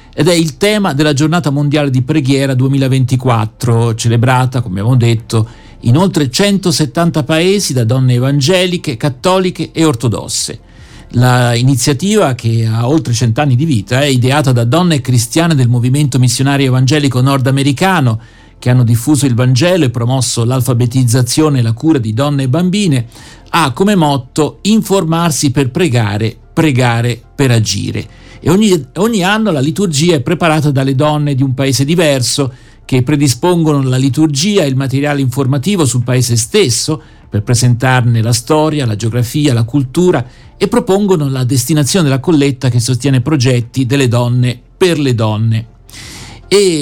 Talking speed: 145 wpm